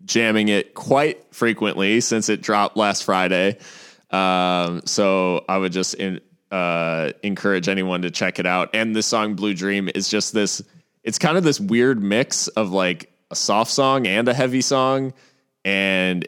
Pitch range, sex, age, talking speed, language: 90-110 Hz, male, 20-39, 170 wpm, English